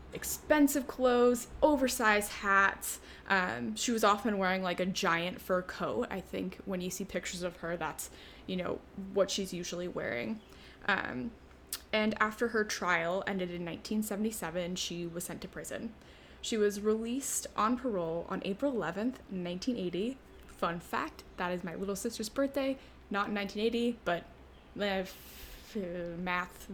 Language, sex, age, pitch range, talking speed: English, female, 10-29, 180-225 Hz, 145 wpm